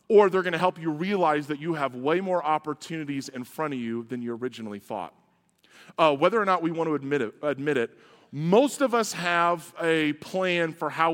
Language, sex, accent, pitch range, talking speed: English, male, American, 145-185 Hz, 205 wpm